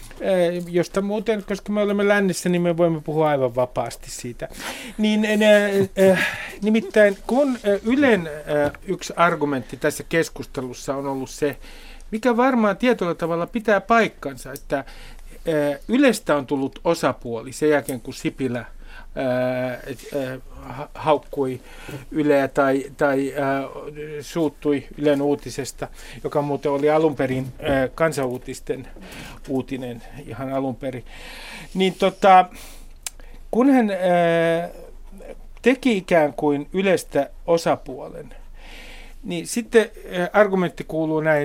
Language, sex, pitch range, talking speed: Finnish, male, 145-195 Hz, 105 wpm